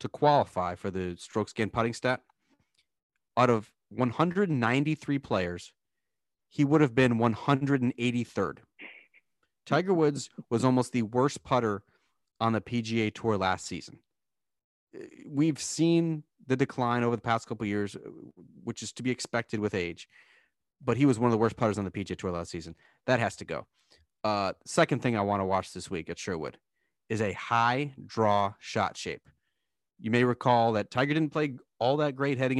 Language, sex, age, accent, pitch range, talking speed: English, male, 30-49, American, 105-125 Hz, 170 wpm